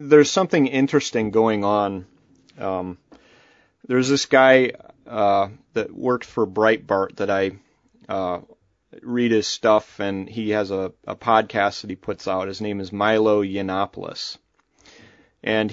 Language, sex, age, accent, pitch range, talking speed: English, male, 30-49, American, 100-125 Hz, 135 wpm